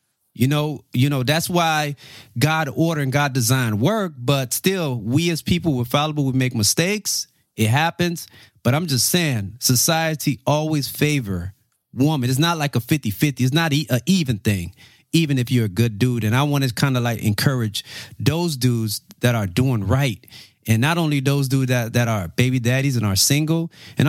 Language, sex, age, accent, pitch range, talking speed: English, male, 30-49, American, 125-165 Hz, 195 wpm